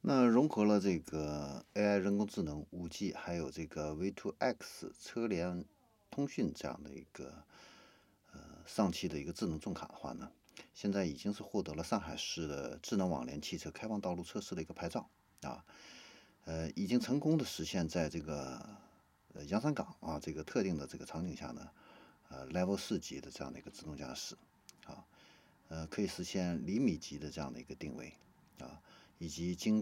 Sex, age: male, 50-69